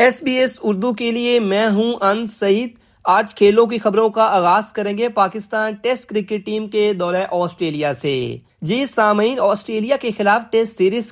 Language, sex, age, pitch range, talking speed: Urdu, male, 20-39, 165-210 Hz, 180 wpm